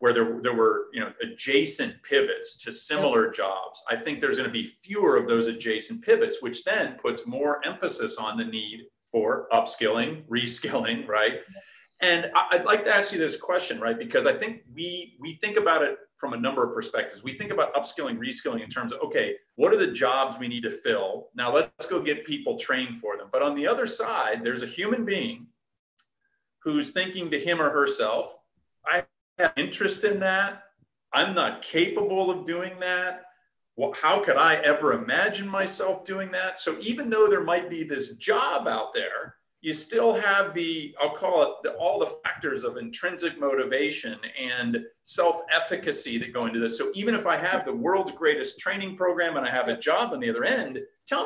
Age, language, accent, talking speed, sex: 40-59, English, American, 195 wpm, male